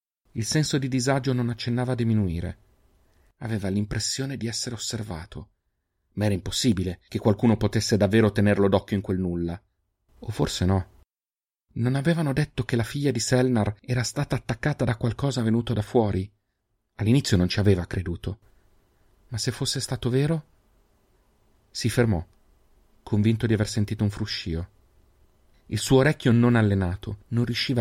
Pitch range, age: 95-120 Hz, 40-59